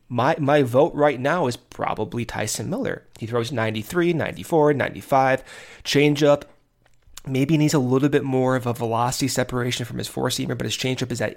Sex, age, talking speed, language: male, 30-49, 175 wpm, English